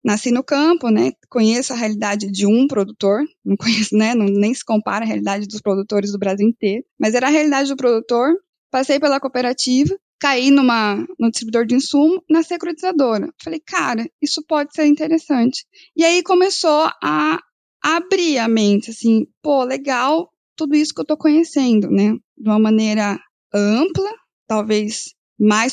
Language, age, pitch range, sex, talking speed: Portuguese, 10-29, 225-315 Hz, female, 165 wpm